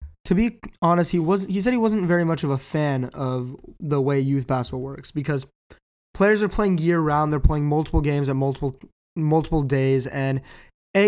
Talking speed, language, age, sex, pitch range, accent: 195 wpm, English, 20-39, male, 135-160 Hz, American